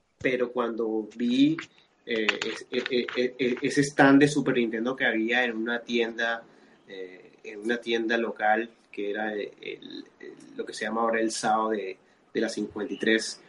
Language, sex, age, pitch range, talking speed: Spanish, male, 30-49, 110-135 Hz, 170 wpm